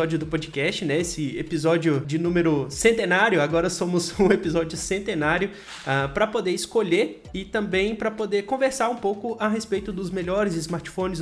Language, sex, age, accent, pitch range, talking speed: Portuguese, male, 20-39, Brazilian, 160-205 Hz, 150 wpm